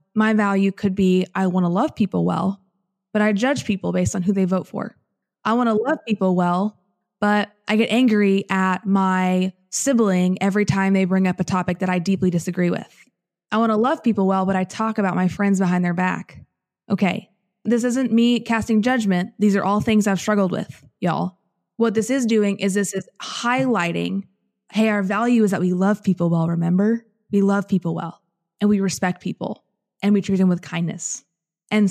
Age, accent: 20-39, American